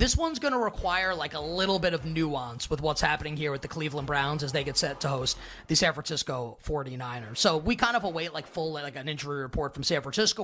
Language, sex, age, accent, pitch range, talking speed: English, male, 30-49, American, 150-190 Hz, 245 wpm